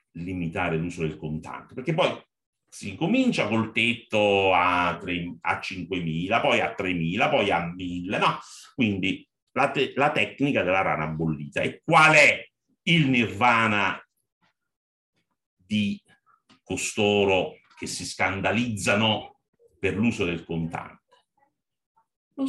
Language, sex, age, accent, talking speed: Italian, male, 50-69, native, 115 wpm